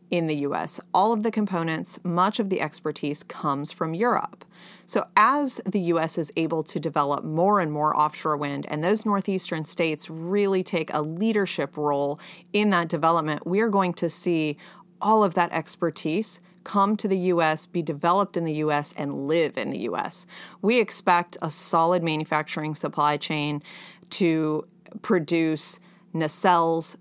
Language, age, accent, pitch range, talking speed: English, 30-49, American, 155-190 Hz, 160 wpm